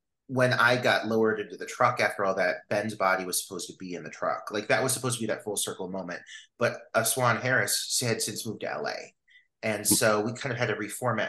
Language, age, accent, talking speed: English, 30-49, American, 240 wpm